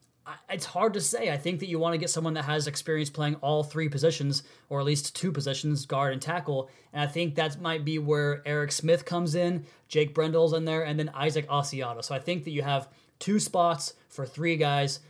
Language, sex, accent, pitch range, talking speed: English, male, American, 135-155 Hz, 225 wpm